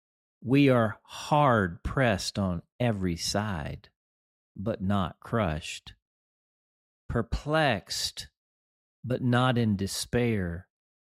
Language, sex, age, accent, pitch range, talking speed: English, male, 40-59, American, 90-120 Hz, 75 wpm